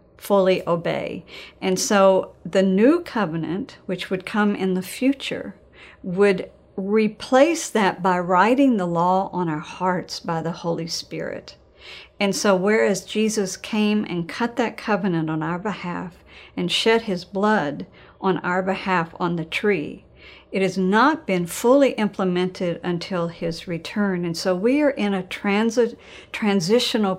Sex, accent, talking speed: female, American, 145 wpm